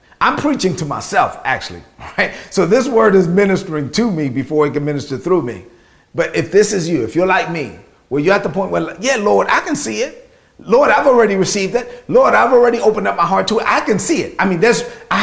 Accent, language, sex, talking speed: American, English, male, 240 wpm